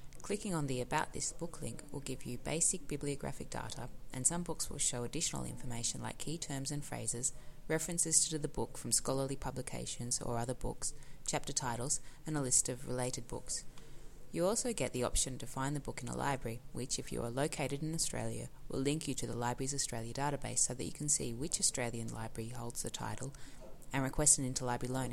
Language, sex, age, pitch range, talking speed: English, female, 20-39, 120-150 Hz, 205 wpm